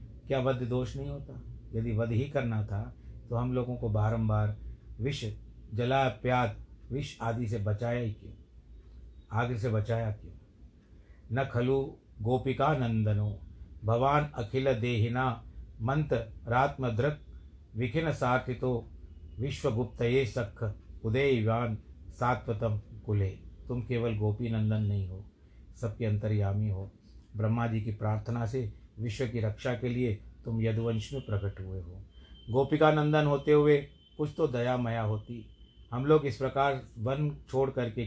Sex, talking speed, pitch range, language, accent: male, 130 wpm, 105-130 Hz, Hindi, native